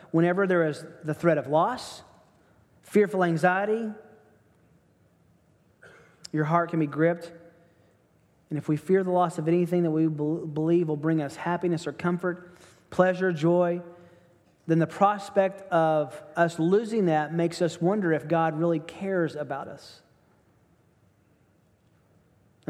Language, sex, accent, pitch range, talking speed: English, male, American, 145-175 Hz, 130 wpm